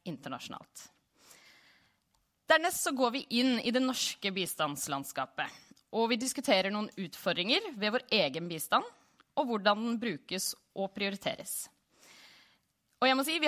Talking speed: 125 wpm